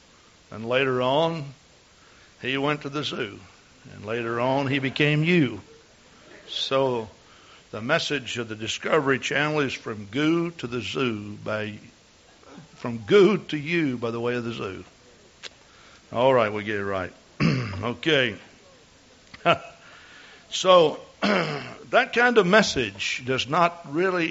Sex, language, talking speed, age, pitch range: male, English, 130 wpm, 60-79, 115-145 Hz